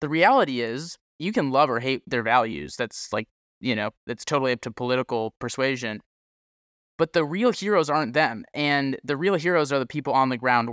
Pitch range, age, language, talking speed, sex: 115-140 Hz, 20-39, English, 200 wpm, male